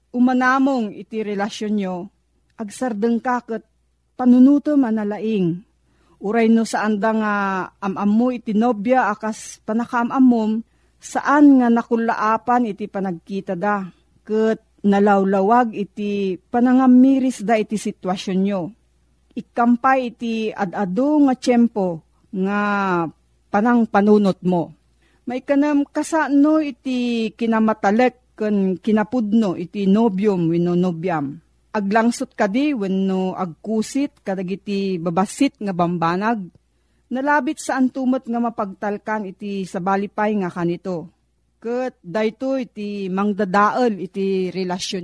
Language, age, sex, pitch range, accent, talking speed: Filipino, 40-59, female, 195-245 Hz, native, 105 wpm